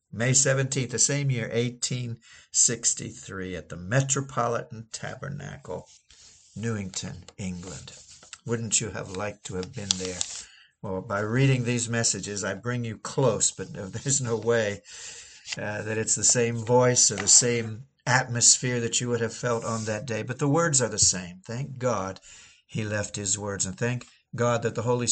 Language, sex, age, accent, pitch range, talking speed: English, male, 60-79, American, 110-140 Hz, 165 wpm